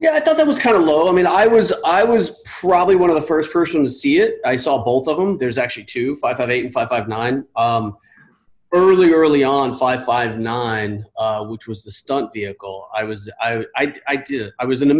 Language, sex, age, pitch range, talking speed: English, male, 30-49, 105-145 Hz, 220 wpm